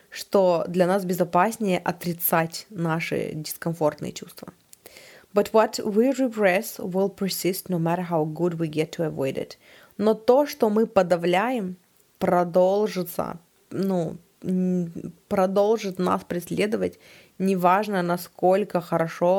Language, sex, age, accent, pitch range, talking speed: Russian, female, 20-39, native, 170-205 Hz, 110 wpm